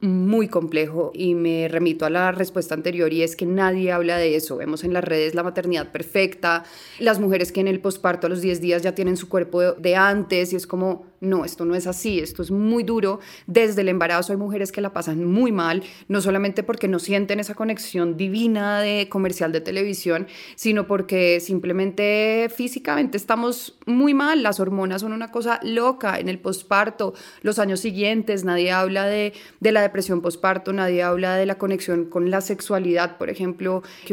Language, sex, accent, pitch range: Spanish, female, Colombian, 180-205 Hz